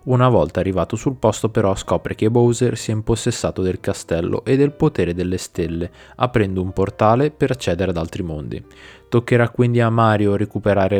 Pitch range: 90-120 Hz